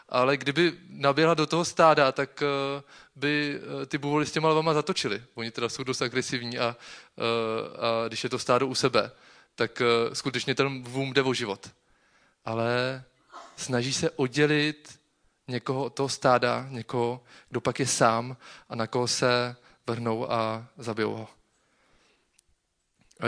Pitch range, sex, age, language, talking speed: 125-150 Hz, male, 20-39, Czech, 145 wpm